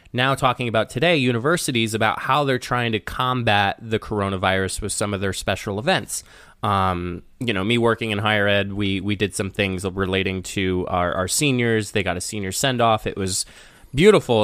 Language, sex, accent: English, male, American